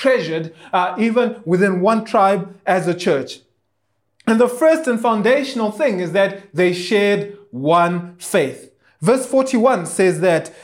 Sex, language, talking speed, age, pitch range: male, English, 140 wpm, 20-39, 195-255 Hz